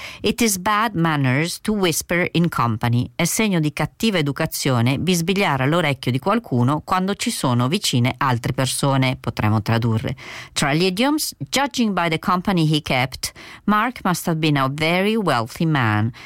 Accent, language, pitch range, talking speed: native, Italian, 130-190 Hz, 155 wpm